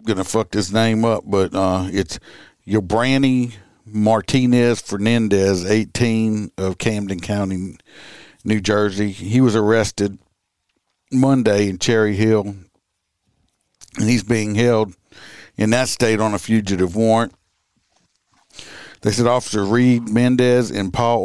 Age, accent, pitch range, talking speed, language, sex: 60-79, American, 100-115 Hz, 125 wpm, English, male